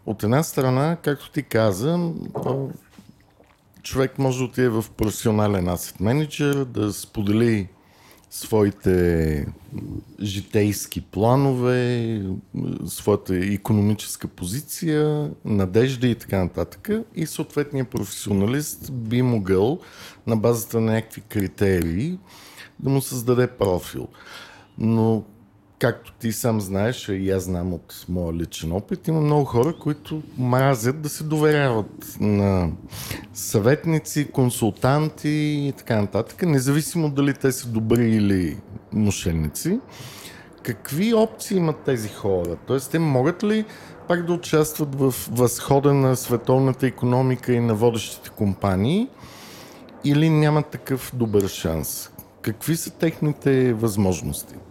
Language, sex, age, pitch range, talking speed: English, male, 50-69, 105-145 Hz, 115 wpm